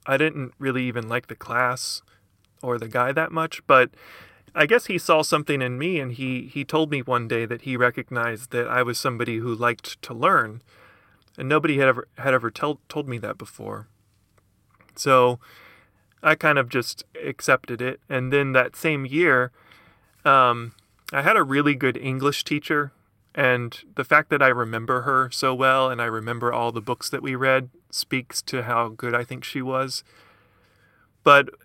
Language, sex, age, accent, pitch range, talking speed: English, male, 30-49, American, 115-135 Hz, 180 wpm